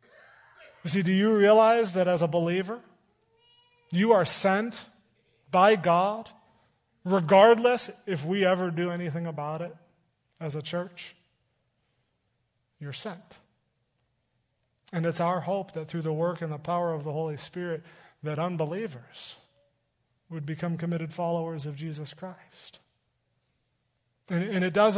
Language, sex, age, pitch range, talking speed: English, male, 30-49, 145-180 Hz, 130 wpm